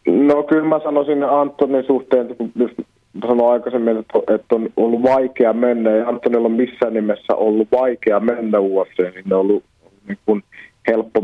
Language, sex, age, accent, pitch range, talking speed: Finnish, male, 30-49, native, 105-130 Hz, 150 wpm